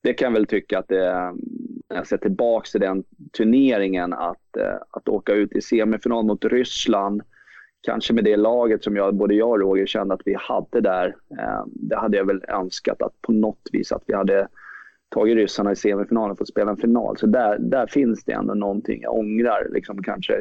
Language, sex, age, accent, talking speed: Swedish, male, 20-39, native, 210 wpm